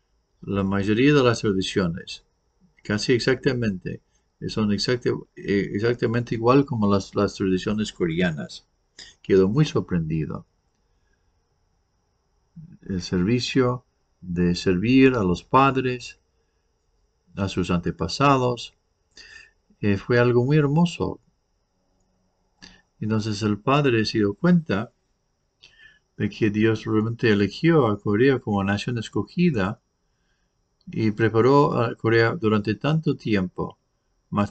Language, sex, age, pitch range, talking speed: English, male, 50-69, 95-130 Hz, 100 wpm